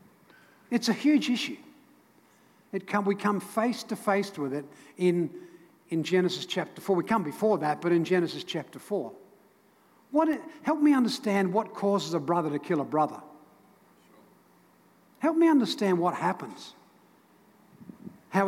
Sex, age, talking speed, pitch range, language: male, 60-79, 150 wpm, 175-225 Hz, English